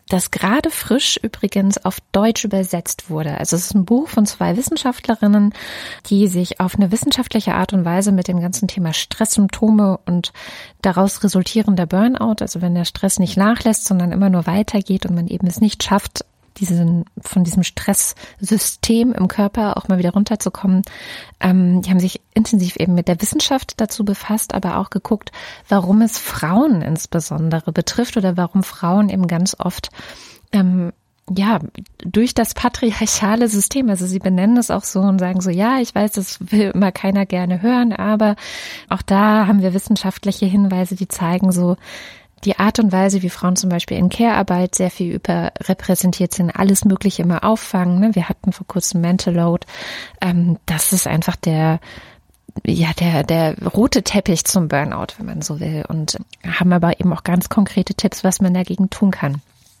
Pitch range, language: 180-210 Hz, German